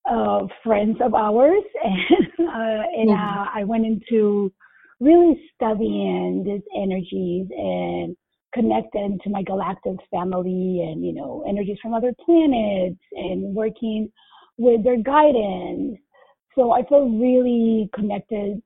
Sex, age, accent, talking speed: female, 30-49, American, 120 wpm